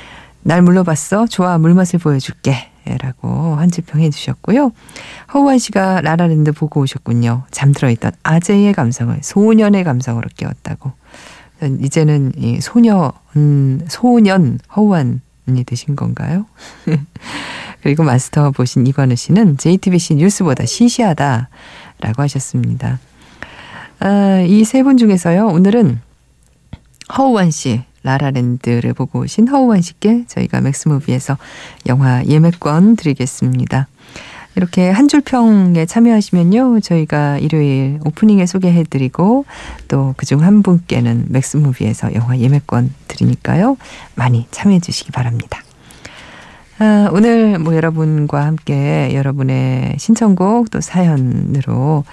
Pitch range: 130-190 Hz